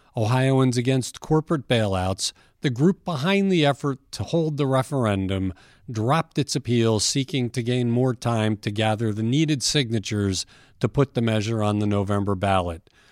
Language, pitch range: English, 110-145 Hz